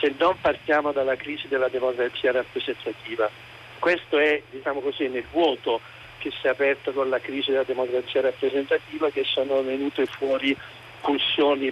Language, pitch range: Italian, 130-155 Hz